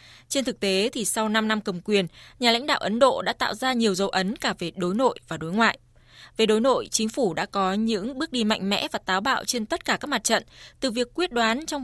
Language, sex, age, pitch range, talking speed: Vietnamese, female, 20-39, 190-245 Hz, 270 wpm